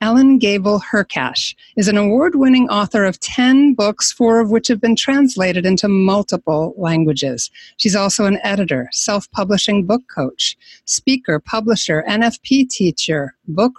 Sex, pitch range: female, 175-225 Hz